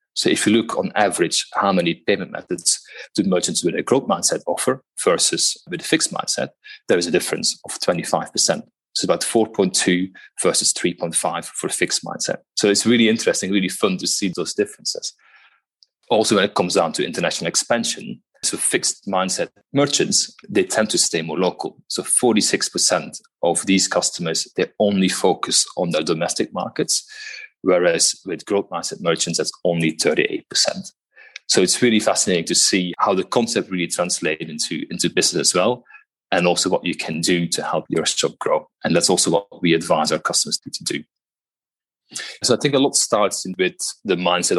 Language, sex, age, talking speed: English, male, 30-49, 175 wpm